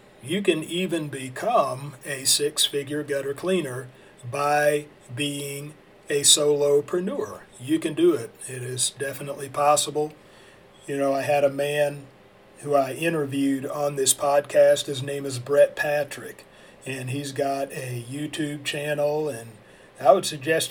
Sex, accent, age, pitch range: male, American, 40-59, 135-155 Hz